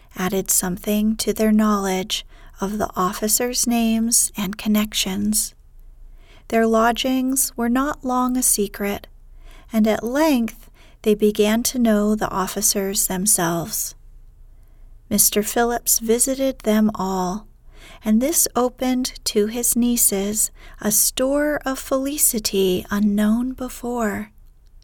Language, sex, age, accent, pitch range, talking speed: English, female, 40-59, American, 200-240 Hz, 110 wpm